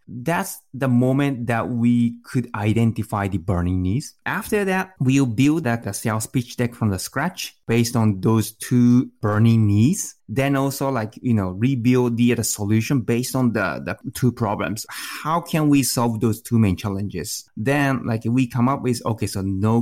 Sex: male